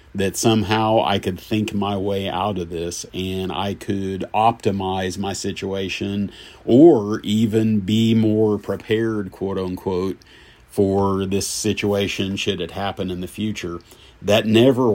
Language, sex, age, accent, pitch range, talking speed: English, male, 50-69, American, 95-110 Hz, 135 wpm